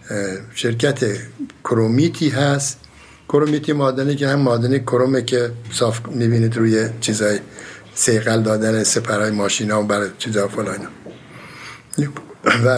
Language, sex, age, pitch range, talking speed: Persian, male, 60-79, 115-145 Hz, 115 wpm